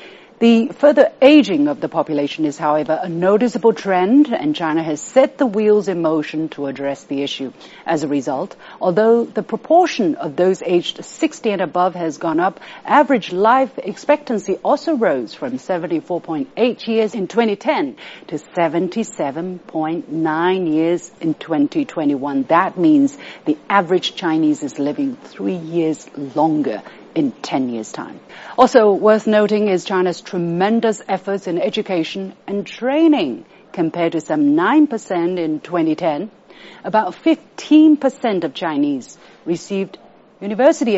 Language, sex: English, female